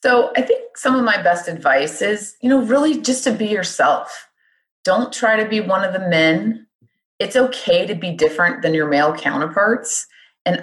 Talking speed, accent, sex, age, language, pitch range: 190 wpm, American, female, 30-49, English, 155-225 Hz